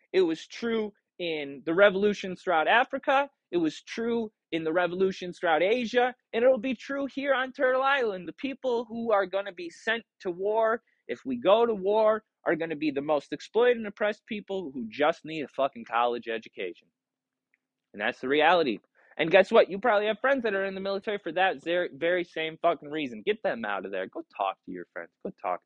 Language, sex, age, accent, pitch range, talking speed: English, male, 20-39, American, 165-230 Hz, 215 wpm